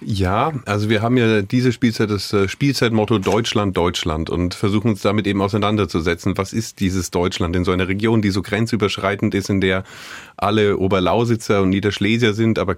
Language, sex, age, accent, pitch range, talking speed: German, male, 30-49, German, 100-115 Hz, 175 wpm